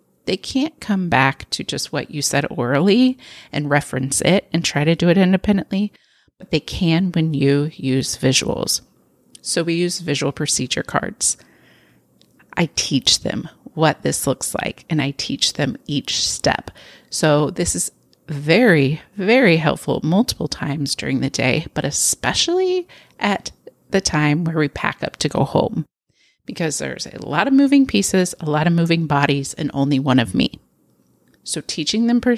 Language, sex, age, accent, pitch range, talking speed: English, female, 30-49, American, 140-185 Hz, 165 wpm